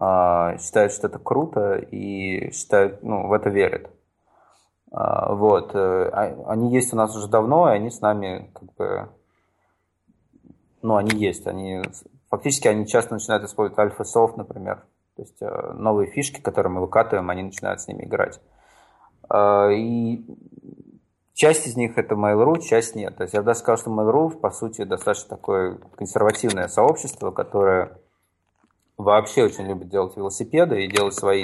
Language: Russian